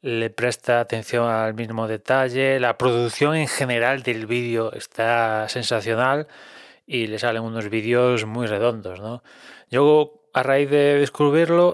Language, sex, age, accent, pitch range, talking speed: Spanish, male, 20-39, Spanish, 120-150 Hz, 140 wpm